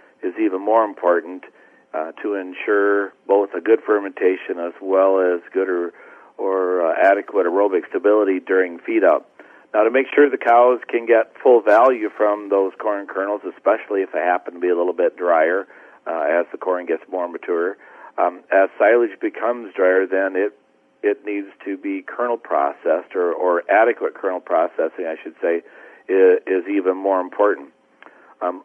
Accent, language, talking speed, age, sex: American, English, 170 wpm, 40-59, male